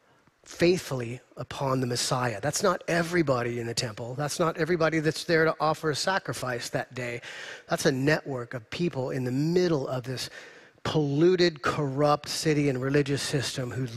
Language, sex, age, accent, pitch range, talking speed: English, male, 30-49, American, 130-160 Hz, 165 wpm